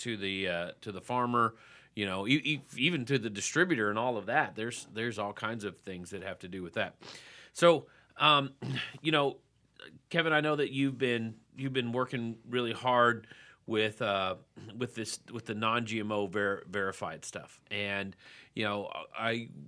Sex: male